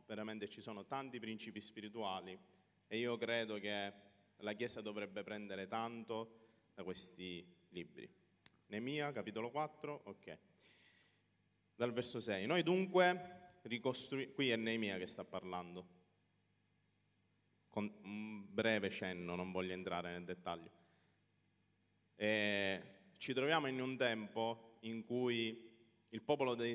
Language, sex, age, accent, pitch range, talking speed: Italian, male, 30-49, native, 95-115 Hz, 120 wpm